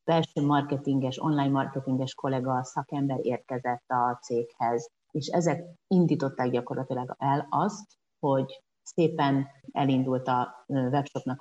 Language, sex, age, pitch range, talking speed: Hungarian, female, 30-49, 135-160 Hz, 105 wpm